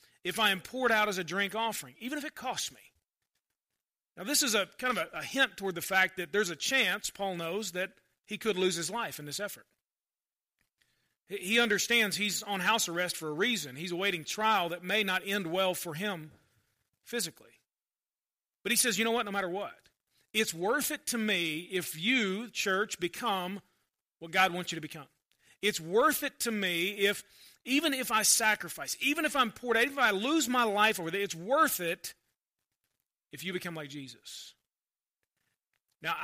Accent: American